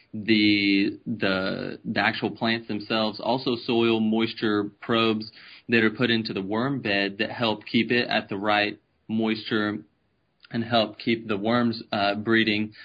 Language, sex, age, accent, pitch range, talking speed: English, male, 20-39, American, 105-115 Hz, 150 wpm